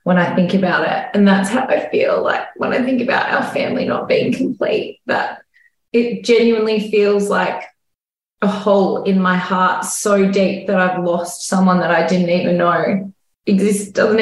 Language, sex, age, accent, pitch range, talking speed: English, female, 20-39, Australian, 185-215 Hz, 180 wpm